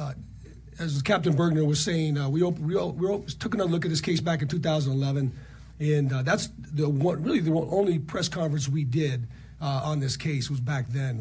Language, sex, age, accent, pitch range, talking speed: English, male, 40-59, American, 140-170 Hz, 220 wpm